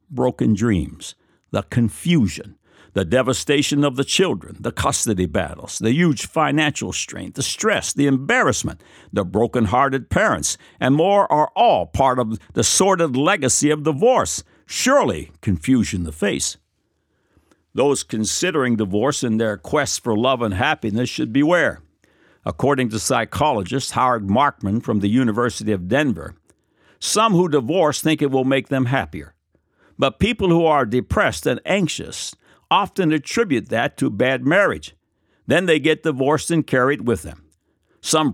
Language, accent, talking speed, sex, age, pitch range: English, American, 145 wpm, male, 60-79, 105-150 Hz